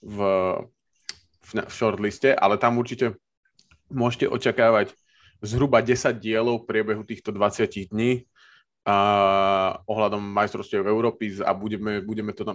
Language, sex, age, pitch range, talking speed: Slovak, male, 20-39, 100-120 Hz, 125 wpm